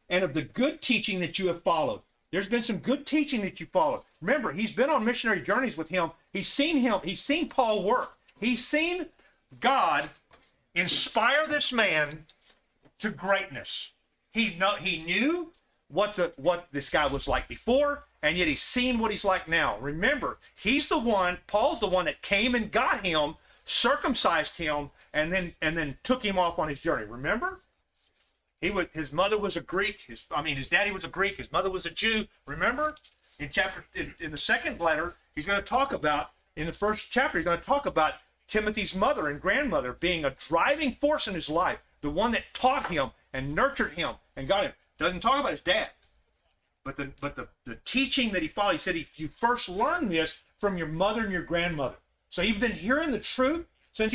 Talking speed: 200 wpm